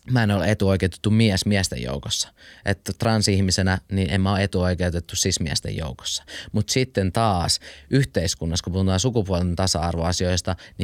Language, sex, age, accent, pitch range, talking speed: Finnish, male, 20-39, native, 90-105 Hz, 140 wpm